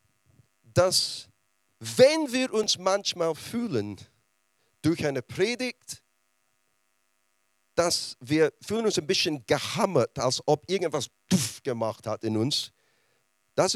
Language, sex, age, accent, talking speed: German, male, 40-59, German, 105 wpm